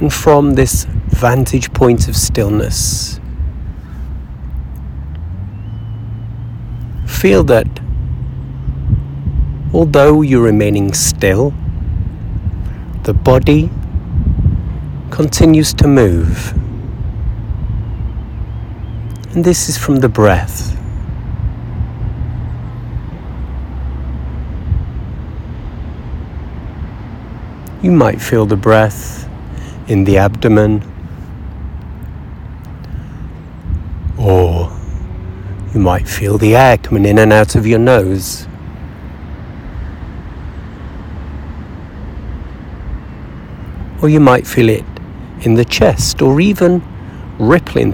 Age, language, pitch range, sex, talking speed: 50-69, English, 80-115 Hz, male, 70 wpm